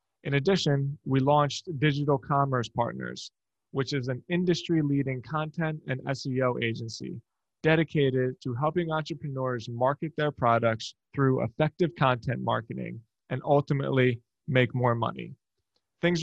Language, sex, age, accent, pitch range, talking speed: English, male, 20-39, American, 125-155 Hz, 120 wpm